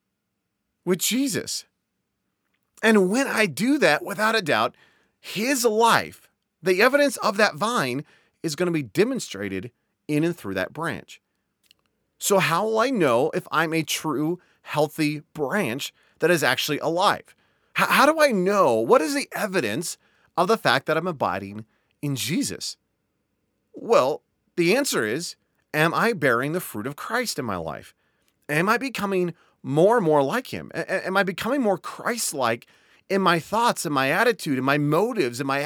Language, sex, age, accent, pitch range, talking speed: English, male, 30-49, American, 145-220 Hz, 160 wpm